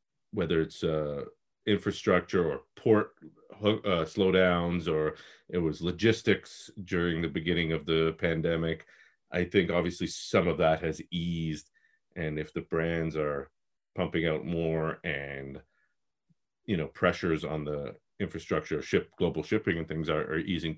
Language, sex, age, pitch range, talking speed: English, male, 40-59, 75-90 Hz, 140 wpm